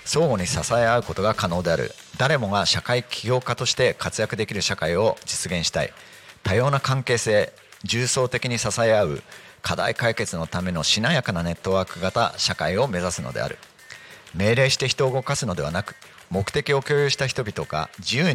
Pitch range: 95-125 Hz